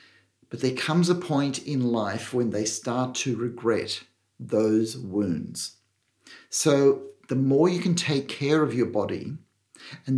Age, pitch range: 50-69, 120-160 Hz